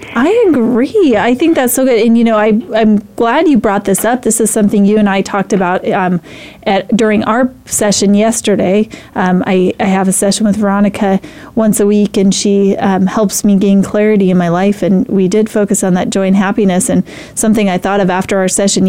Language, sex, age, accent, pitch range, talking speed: English, female, 30-49, American, 195-245 Hz, 220 wpm